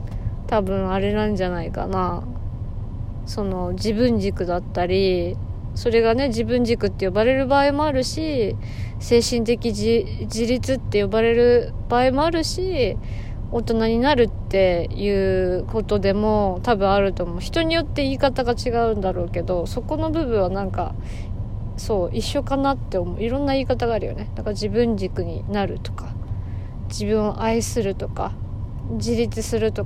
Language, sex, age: Japanese, female, 20-39